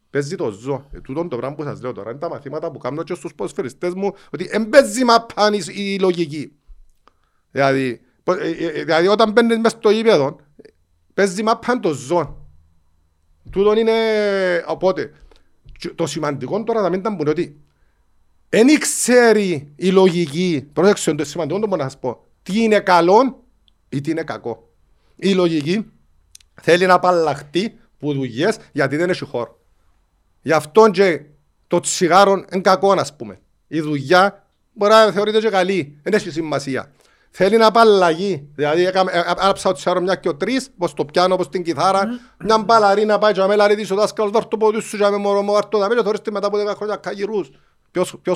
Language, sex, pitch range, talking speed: Greek, male, 145-205 Hz, 155 wpm